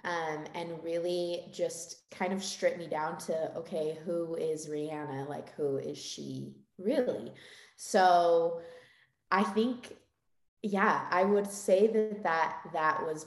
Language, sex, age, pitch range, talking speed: English, female, 20-39, 155-195 Hz, 135 wpm